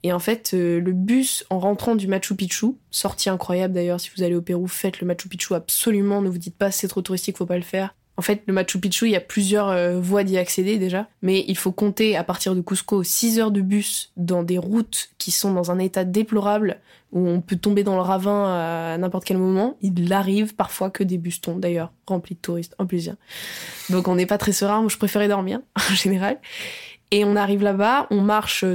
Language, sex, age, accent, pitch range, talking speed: French, female, 20-39, French, 185-215 Hz, 240 wpm